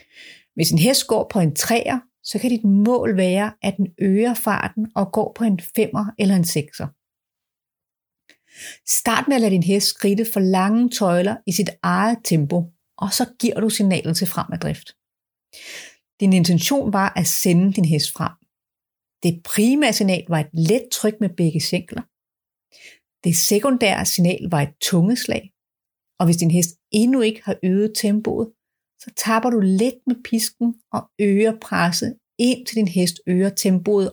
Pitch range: 180-225 Hz